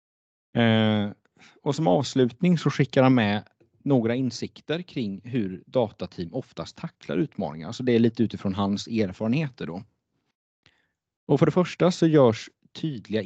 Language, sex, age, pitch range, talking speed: Swedish, male, 30-49, 100-130 Hz, 135 wpm